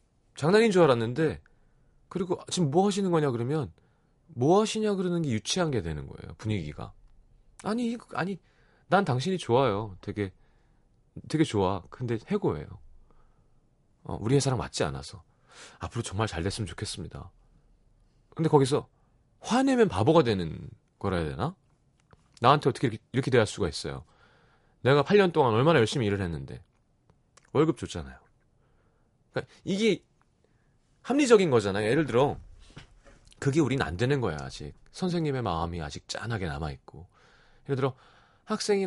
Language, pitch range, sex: Korean, 110-160 Hz, male